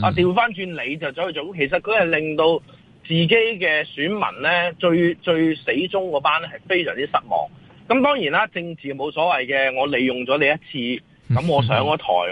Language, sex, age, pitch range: Chinese, male, 30-49, 130-190 Hz